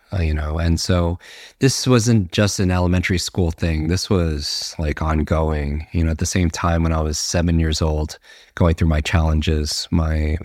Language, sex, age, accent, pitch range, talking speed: English, male, 30-49, American, 80-90 Hz, 190 wpm